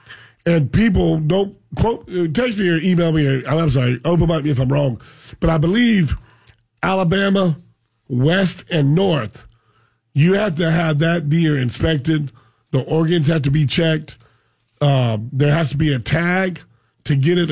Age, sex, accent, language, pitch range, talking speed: 40-59, male, American, English, 130-175 Hz, 160 wpm